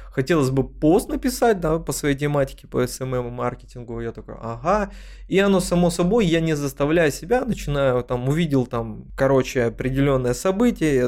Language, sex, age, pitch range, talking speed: Russian, male, 20-39, 125-170 Hz, 170 wpm